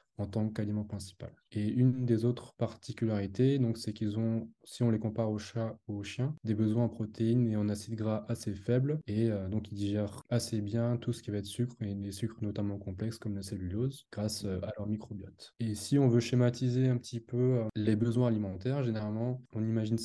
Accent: French